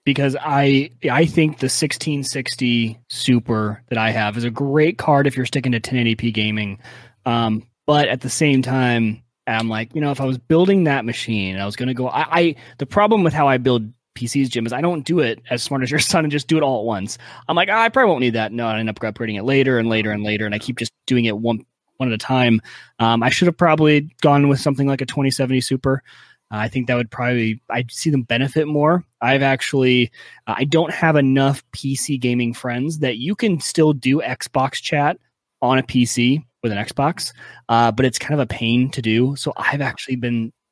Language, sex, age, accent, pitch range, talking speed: English, male, 20-39, American, 115-145 Hz, 230 wpm